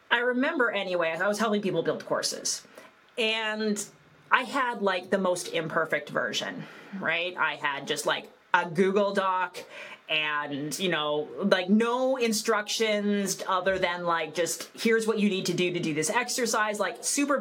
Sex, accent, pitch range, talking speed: female, American, 175-225 Hz, 160 wpm